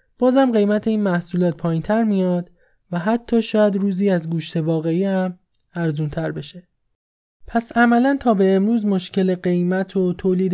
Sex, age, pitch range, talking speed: male, 20-39, 175-215 Hz, 155 wpm